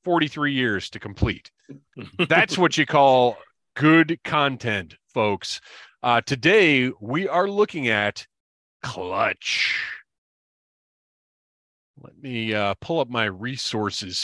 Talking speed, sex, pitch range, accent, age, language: 105 wpm, male, 95-135 Hz, American, 30-49, English